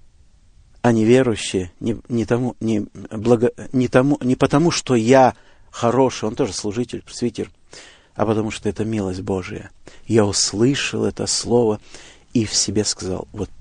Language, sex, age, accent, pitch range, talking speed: Russian, male, 50-69, native, 100-130 Hz, 150 wpm